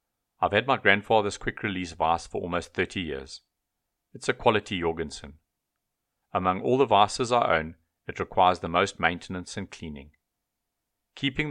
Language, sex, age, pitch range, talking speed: English, male, 40-59, 80-105 Hz, 145 wpm